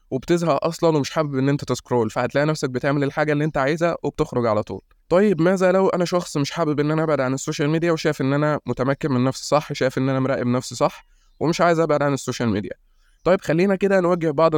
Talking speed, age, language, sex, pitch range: 225 wpm, 20-39, Arabic, male, 125-160 Hz